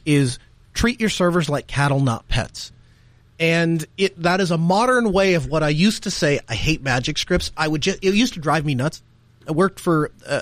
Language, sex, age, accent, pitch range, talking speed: English, male, 30-49, American, 125-180 Hz, 220 wpm